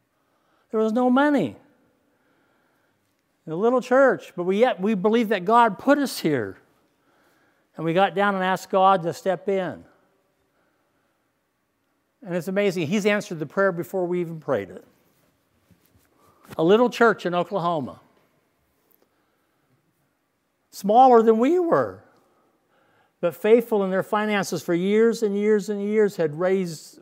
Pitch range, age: 170-235 Hz, 60-79